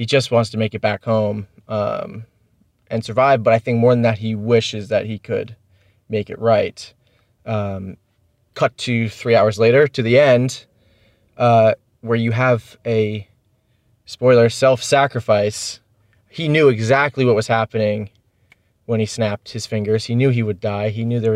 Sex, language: male, English